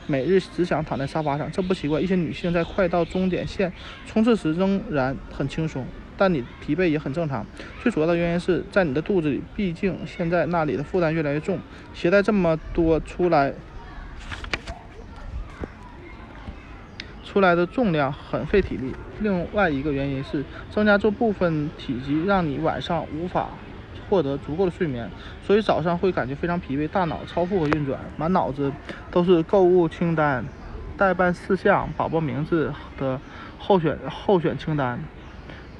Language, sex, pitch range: Chinese, male, 145-190 Hz